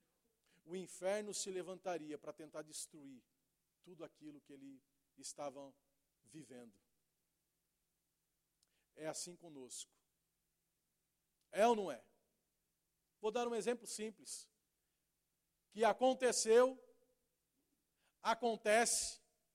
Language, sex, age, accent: Portuguese, male, 50-69, Brazilian